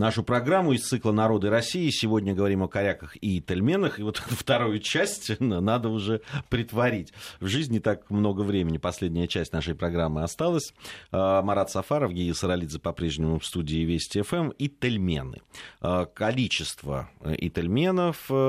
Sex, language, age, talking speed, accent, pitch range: male, Russian, 30-49, 135 wpm, native, 80-105 Hz